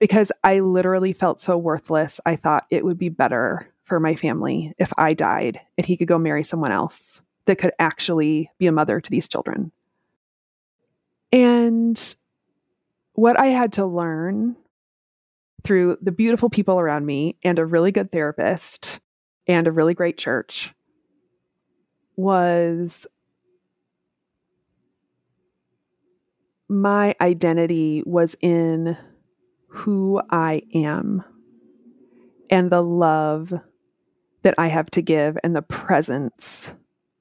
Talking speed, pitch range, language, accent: 120 wpm, 160-190 Hz, English, American